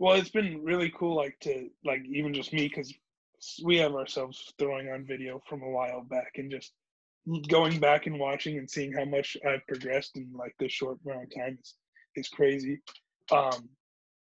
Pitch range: 135-160 Hz